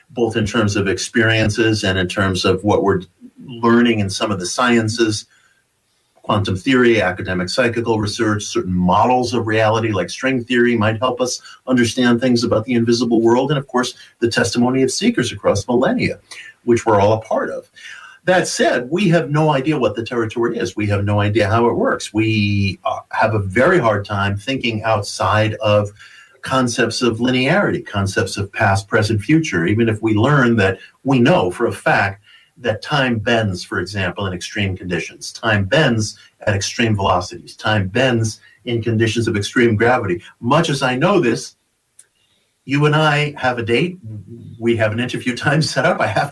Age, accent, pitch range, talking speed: 50-69, American, 105-130 Hz, 175 wpm